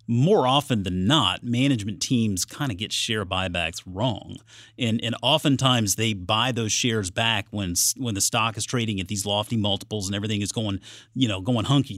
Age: 30-49